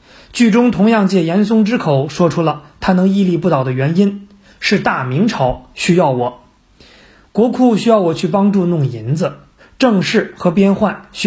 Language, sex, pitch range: Chinese, male, 160-225 Hz